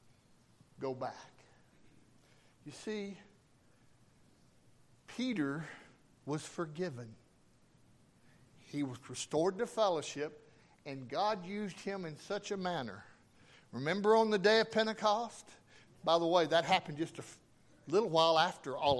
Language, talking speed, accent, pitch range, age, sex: English, 115 wpm, American, 140-220 Hz, 60-79, male